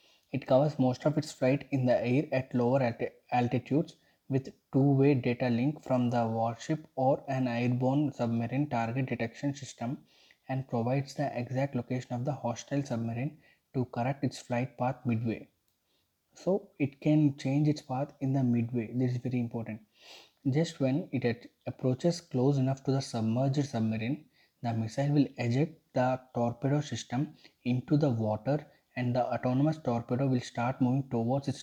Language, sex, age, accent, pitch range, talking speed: English, male, 20-39, Indian, 120-140 Hz, 155 wpm